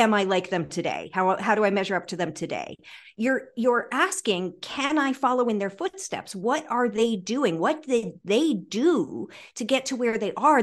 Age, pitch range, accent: 50-69, 175-240 Hz, American